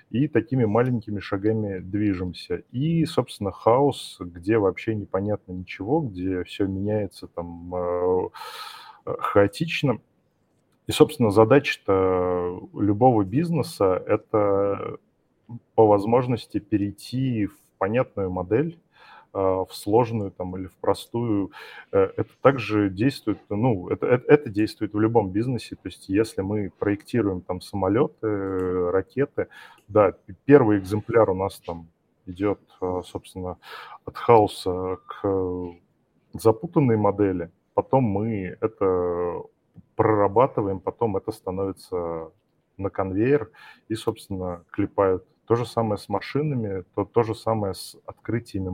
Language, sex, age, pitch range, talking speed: Russian, male, 20-39, 95-115 Hz, 105 wpm